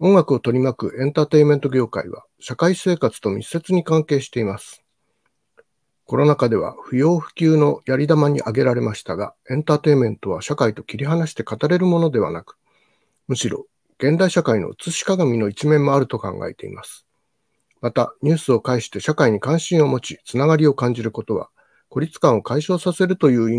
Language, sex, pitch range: Japanese, male, 120-170 Hz